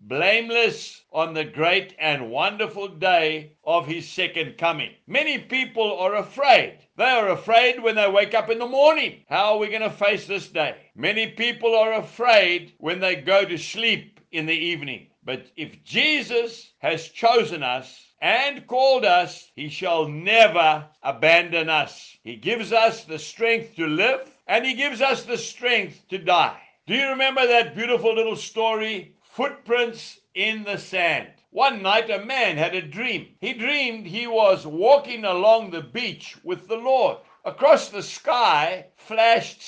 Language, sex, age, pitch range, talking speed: English, male, 60-79, 175-240 Hz, 160 wpm